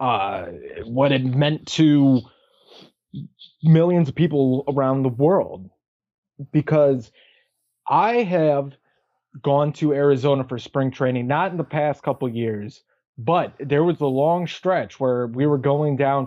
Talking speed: 135 wpm